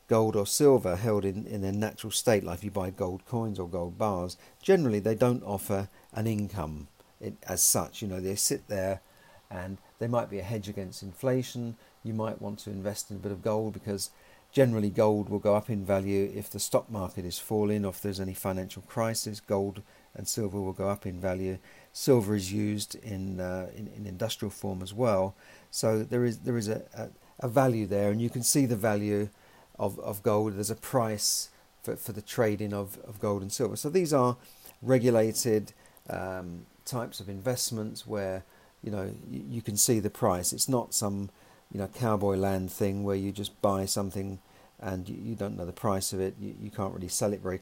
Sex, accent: male, British